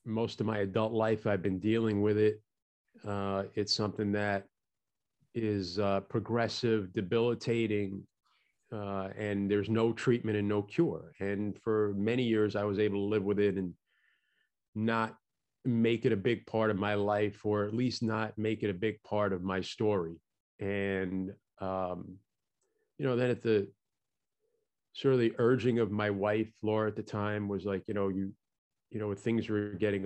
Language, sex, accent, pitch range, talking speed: English, male, American, 100-120 Hz, 175 wpm